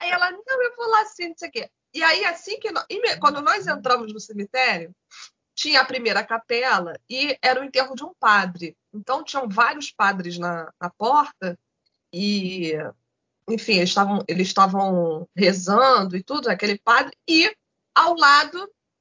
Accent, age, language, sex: Brazilian, 20-39, Portuguese, female